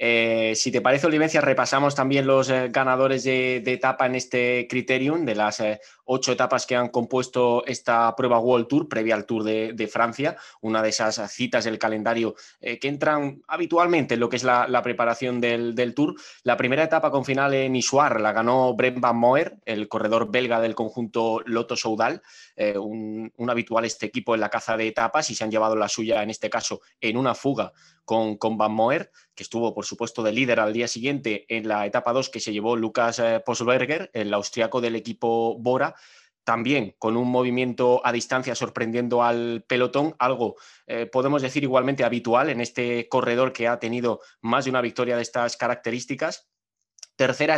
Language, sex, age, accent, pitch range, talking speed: Spanish, male, 20-39, Spanish, 115-130 Hz, 190 wpm